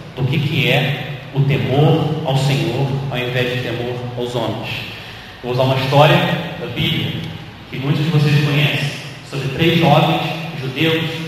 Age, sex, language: 30-49, male, Portuguese